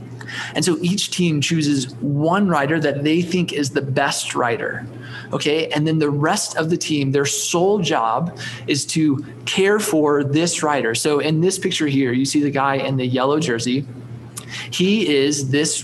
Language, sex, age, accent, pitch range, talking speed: English, male, 20-39, American, 135-170 Hz, 180 wpm